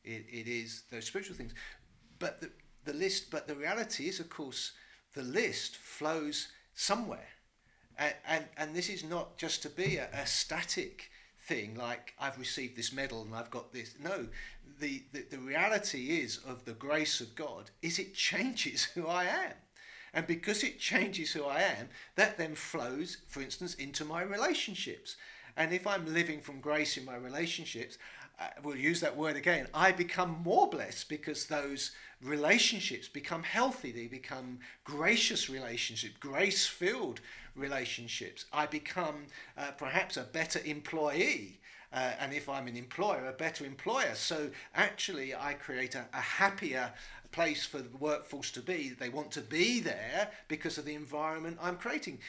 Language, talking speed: English, 165 wpm